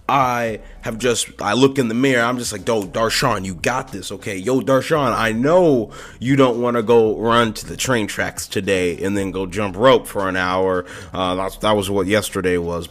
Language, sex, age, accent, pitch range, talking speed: English, male, 30-49, American, 110-140 Hz, 220 wpm